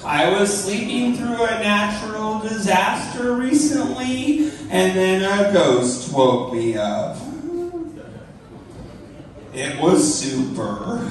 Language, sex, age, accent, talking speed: English, male, 40-59, American, 95 wpm